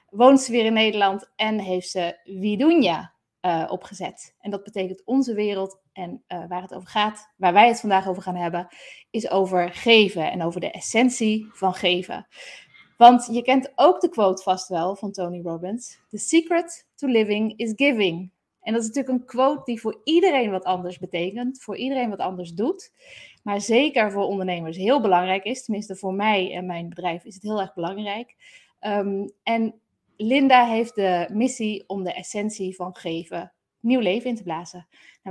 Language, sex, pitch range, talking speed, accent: Dutch, female, 185-235 Hz, 180 wpm, Dutch